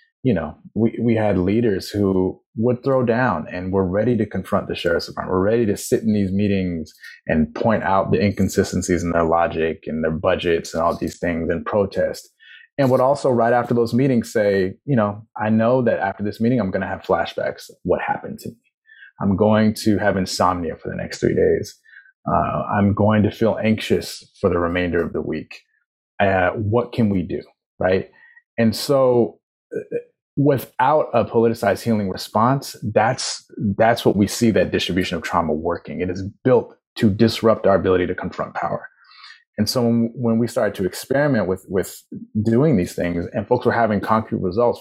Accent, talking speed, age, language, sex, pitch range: American, 185 wpm, 30-49, English, male, 95-120 Hz